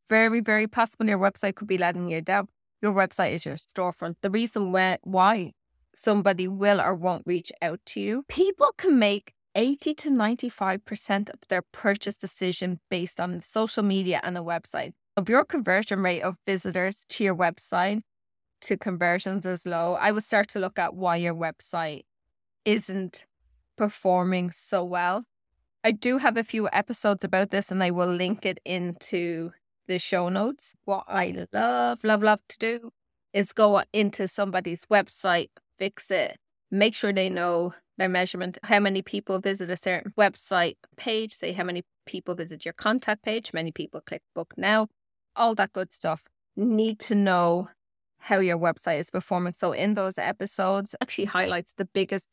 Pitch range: 180-210 Hz